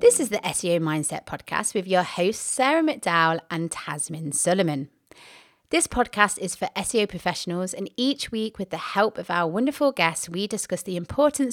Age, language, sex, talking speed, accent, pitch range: 30-49, English, female, 175 wpm, British, 175-245 Hz